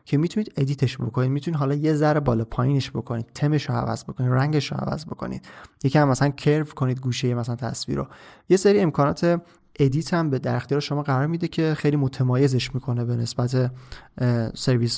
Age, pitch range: 30-49, 125-150 Hz